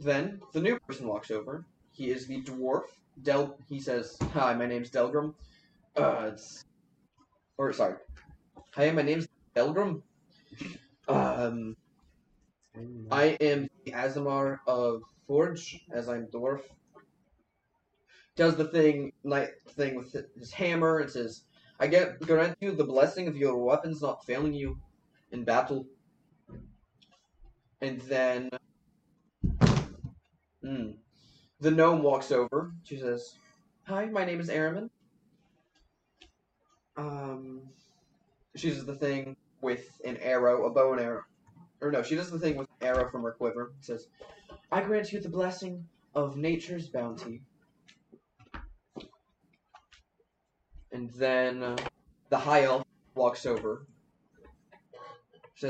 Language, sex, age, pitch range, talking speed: English, male, 20-39, 125-160 Hz, 125 wpm